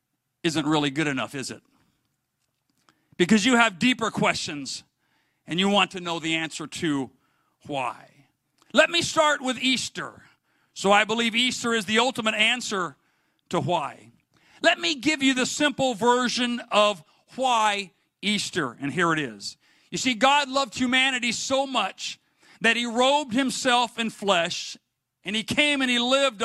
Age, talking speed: 50-69, 155 wpm